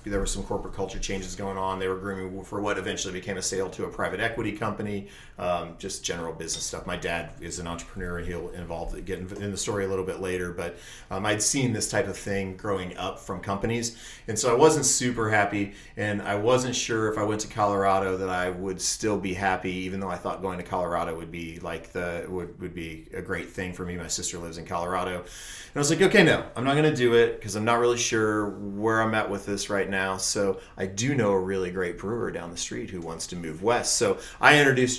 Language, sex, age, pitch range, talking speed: English, male, 30-49, 90-105 Hz, 245 wpm